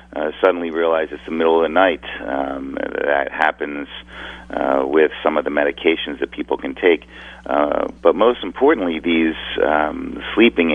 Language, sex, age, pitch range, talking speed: English, male, 40-59, 70-80 Hz, 165 wpm